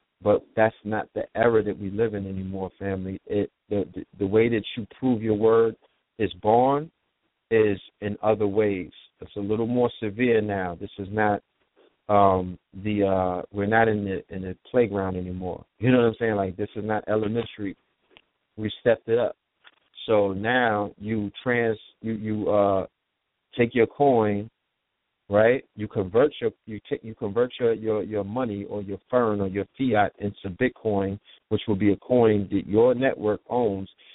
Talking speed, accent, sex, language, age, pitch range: 175 wpm, American, male, English, 50-69, 100-115 Hz